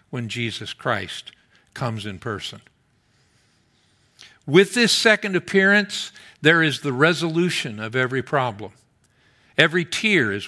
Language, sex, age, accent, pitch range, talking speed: English, male, 50-69, American, 140-210 Hz, 115 wpm